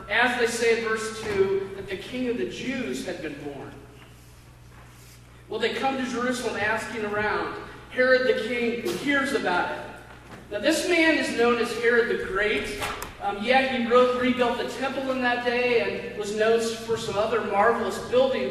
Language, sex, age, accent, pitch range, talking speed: English, male, 40-59, American, 205-260 Hz, 180 wpm